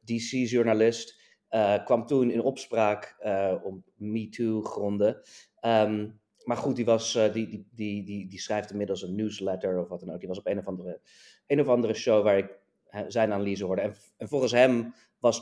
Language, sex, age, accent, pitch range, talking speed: Dutch, male, 30-49, Dutch, 100-115 Hz, 185 wpm